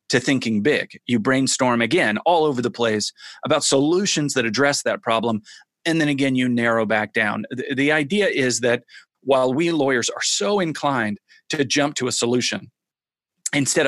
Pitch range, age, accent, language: 120-145 Hz, 30-49, American, English